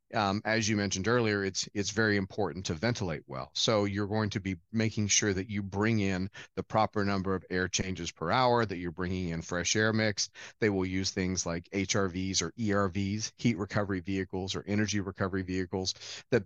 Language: English